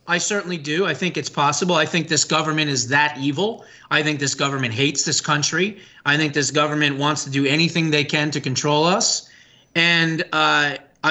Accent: American